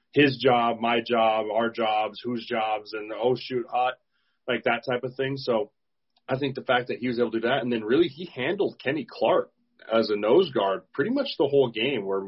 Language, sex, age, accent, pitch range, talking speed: English, male, 30-49, American, 115-180 Hz, 225 wpm